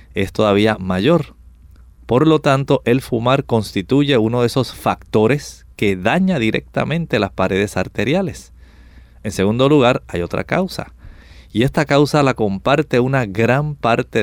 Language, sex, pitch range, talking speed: English, male, 95-135 Hz, 140 wpm